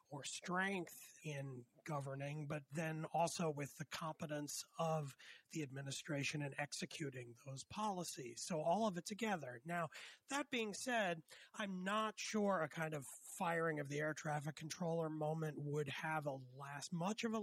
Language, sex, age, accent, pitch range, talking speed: English, male, 40-59, American, 145-185 Hz, 160 wpm